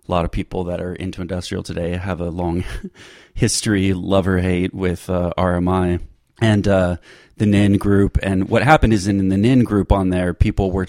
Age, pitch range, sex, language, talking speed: 30-49, 85-100 Hz, male, English, 200 wpm